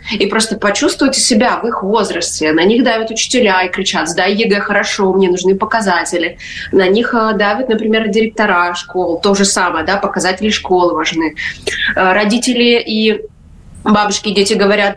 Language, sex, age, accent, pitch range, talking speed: Russian, female, 20-39, native, 190-225 Hz, 150 wpm